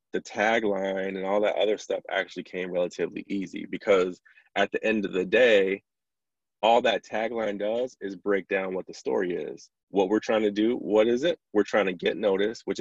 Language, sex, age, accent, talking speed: English, male, 20-39, American, 200 wpm